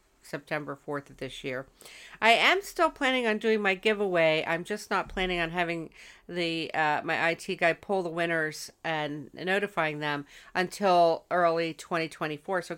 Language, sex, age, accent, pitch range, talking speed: English, female, 50-69, American, 165-220 Hz, 155 wpm